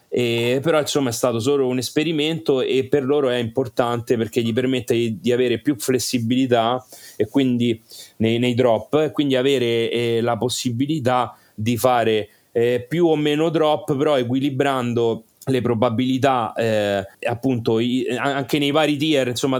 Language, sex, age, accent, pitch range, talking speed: Italian, male, 30-49, native, 115-140 Hz, 155 wpm